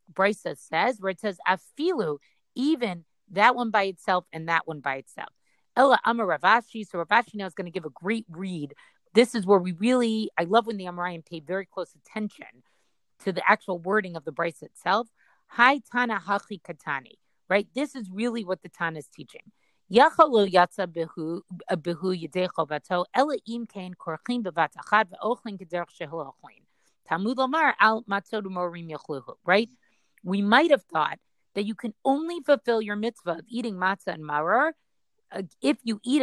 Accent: American